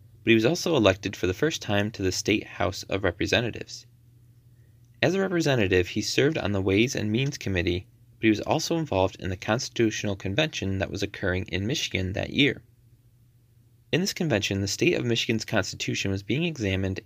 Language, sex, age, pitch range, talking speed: English, male, 20-39, 100-120 Hz, 185 wpm